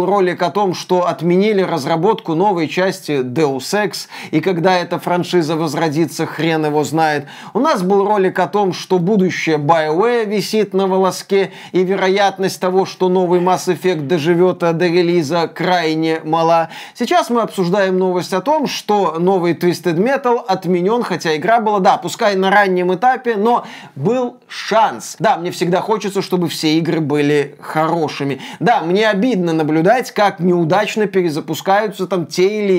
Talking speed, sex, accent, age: 150 wpm, male, native, 20-39